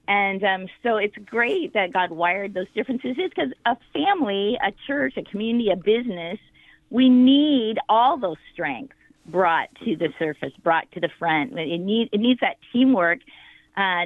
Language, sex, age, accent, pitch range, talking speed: English, female, 40-59, American, 180-220 Hz, 165 wpm